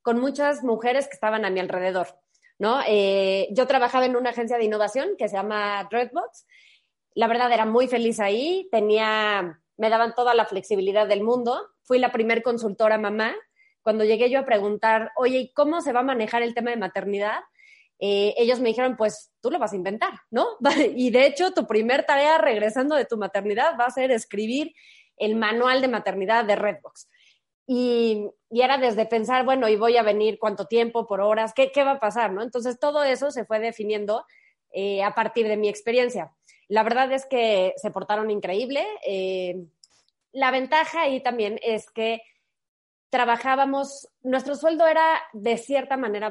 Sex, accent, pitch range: female, Mexican, 210-260 Hz